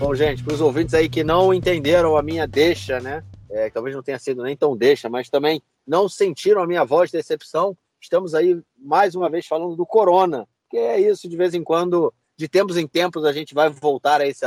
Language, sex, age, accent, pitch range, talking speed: Portuguese, male, 30-49, Brazilian, 140-185 Hz, 225 wpm